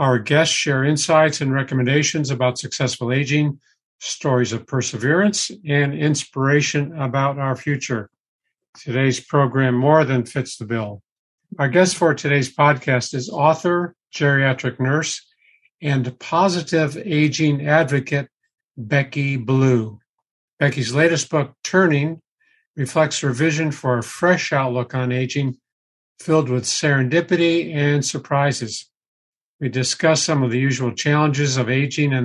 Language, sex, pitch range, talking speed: English, male, 125-150 Hz, 125 wpm